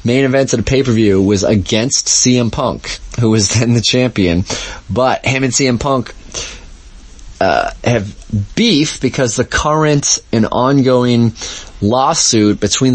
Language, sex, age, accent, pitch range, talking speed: English, male, 30-49, American, 95-115 Hz, 135 wpm